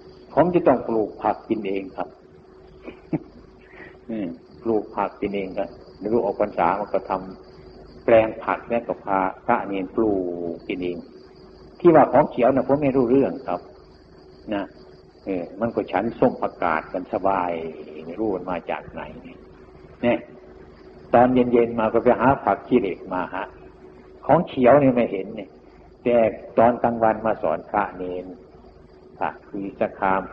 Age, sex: 60-79, male